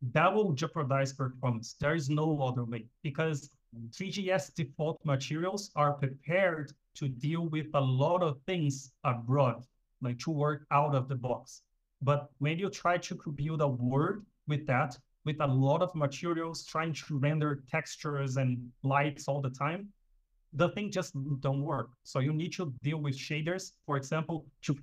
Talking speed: 165 wpm